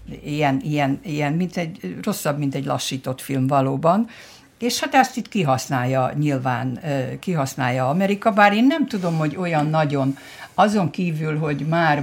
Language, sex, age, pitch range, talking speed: Hungarian, female, 60-79, 130-175 Hz, 150 wpm